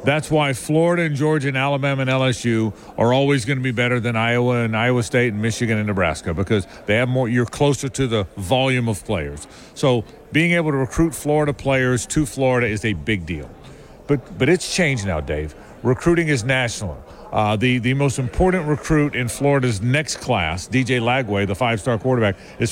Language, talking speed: English, 195 wpm